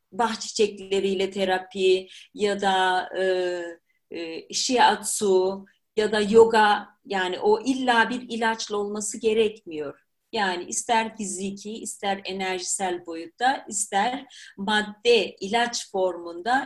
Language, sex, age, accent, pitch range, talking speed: Turkish, female, 40-59, native, 190-270 Hz, 100 wpm